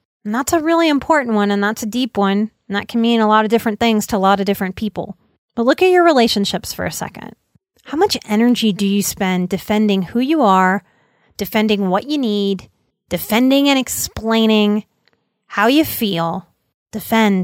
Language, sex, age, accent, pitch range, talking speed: English, female, 30-49, American, 200-285 Hz, 190 wpm